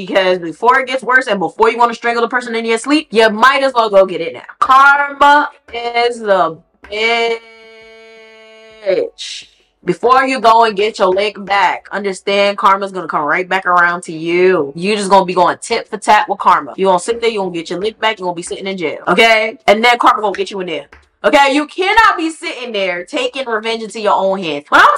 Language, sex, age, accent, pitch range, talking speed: English, female, 20-39, American, 195-265 Hz, 245 wpm